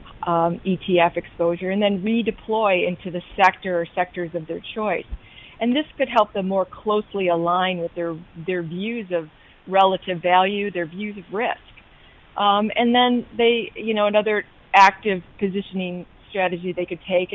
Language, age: English, 40-59